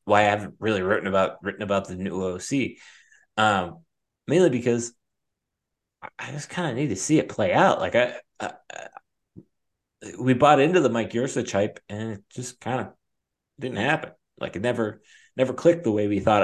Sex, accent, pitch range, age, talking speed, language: male, American, 100-120 Hz, 30-49, 185 wpm, English